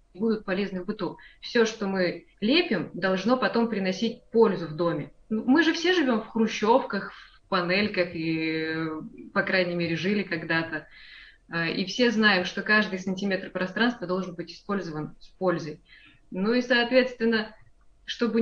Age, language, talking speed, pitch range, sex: 20-39, Russian, 145 wpm, 185-235 Hz, female